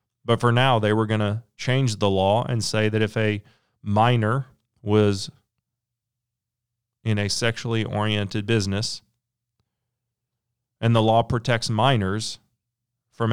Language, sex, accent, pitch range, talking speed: English, male, American, 105-120 Hz, 125 wpm